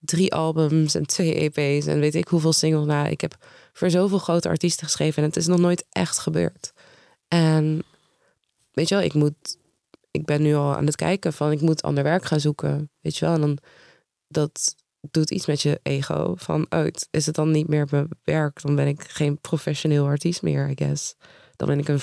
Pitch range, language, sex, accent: 140-165 Hz, Dutch, female, Dutch